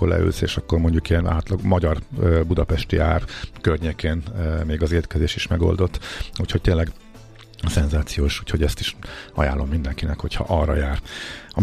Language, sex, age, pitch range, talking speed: Hungarian, male, 50-69, 90-110 Hz, 135 wpm